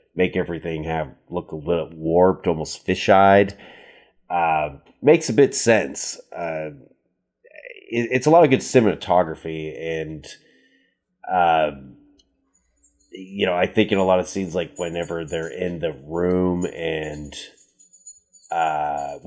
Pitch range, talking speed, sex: 80-105 Hz, 130 wpm, male